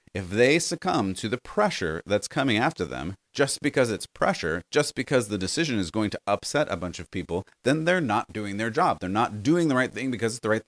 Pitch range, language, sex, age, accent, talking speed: 90-120 Hz, English, male, 30-49, American, 235 wpm